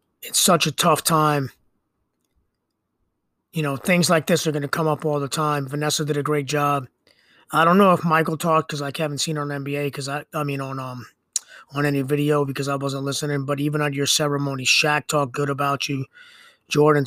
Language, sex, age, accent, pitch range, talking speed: English, male, 30-49, American, 140-160 Hz, 215 wpm